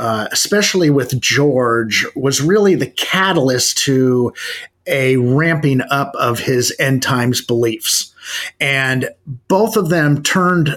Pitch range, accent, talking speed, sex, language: 125-150 Hz, American, 125 wpm, male, English